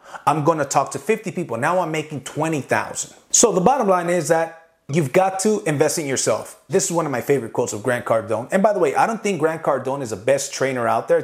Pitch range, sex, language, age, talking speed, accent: 150-200 Hz, male, English, 30-49, 260 wpm, American